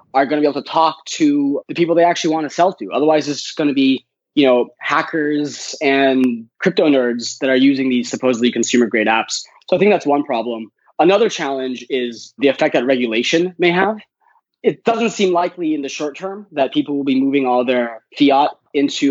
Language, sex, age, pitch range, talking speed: English, male, 20-39, 120-160 Hz, 205 wpm